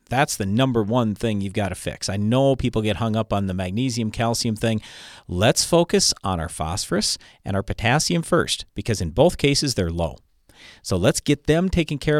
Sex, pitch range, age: male, 100-145 Hz, 40-59